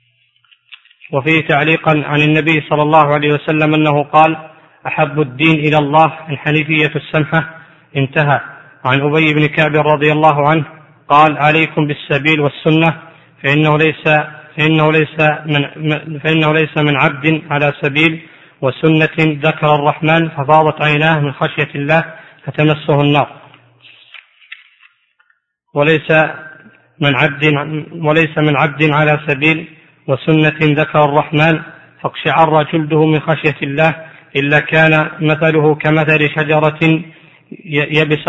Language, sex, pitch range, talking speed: Arabic, male, 150-160 Hz, 115 wpm